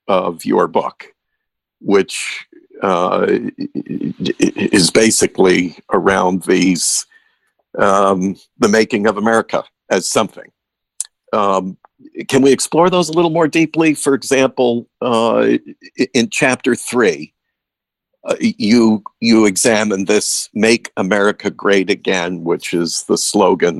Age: 50-69